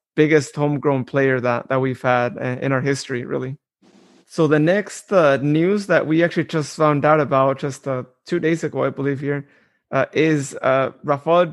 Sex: male